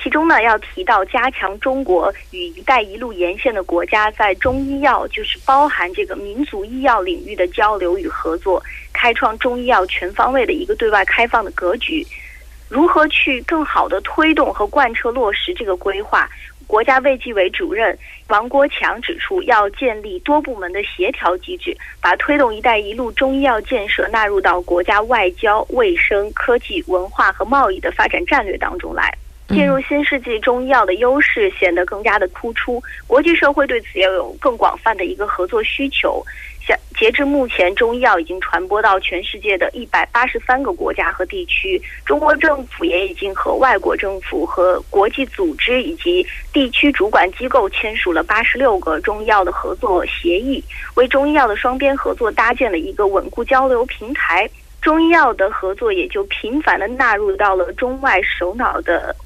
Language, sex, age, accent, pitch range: Korean, female, 20-39, Chinese, 205-315 Hz